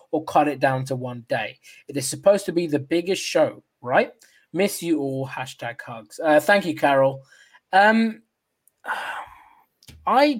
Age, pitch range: 20-39, 140-195 Hz